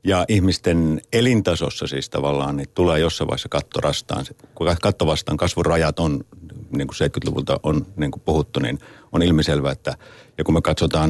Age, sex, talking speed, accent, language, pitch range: 50-69, male, 160 wpm, native, Finnish, 80-115 Hz